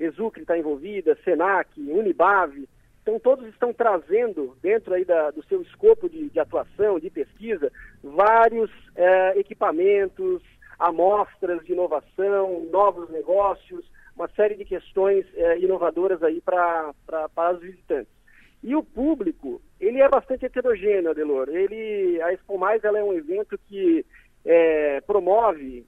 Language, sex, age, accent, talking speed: Portuguese, male, 50-69, Brazilian, 135 wpm